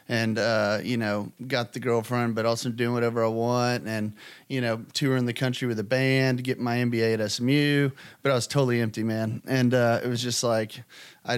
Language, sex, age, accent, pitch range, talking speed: English, male, 30-49, American, 110-125 Hz, 210 wpm